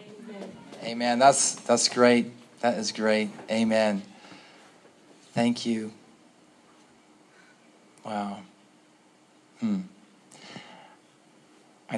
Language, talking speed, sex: English, 65 wpm, male